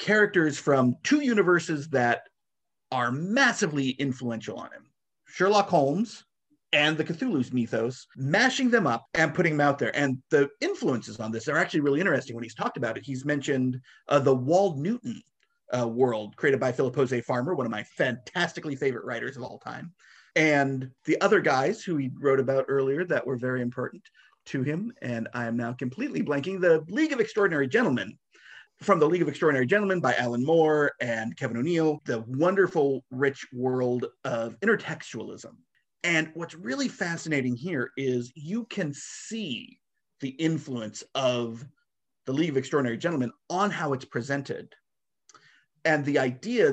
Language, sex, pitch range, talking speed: English, male, 125-180 Hz, 165 wpm